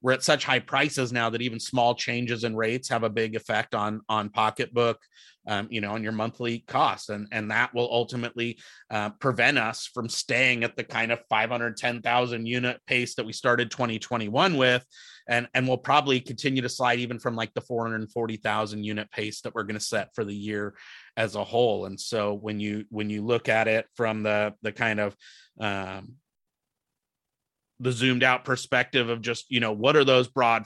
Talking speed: 195 wpm